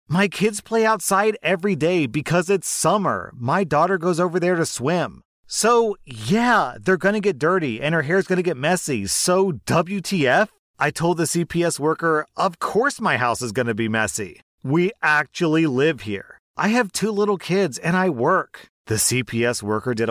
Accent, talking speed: American, 175 wpm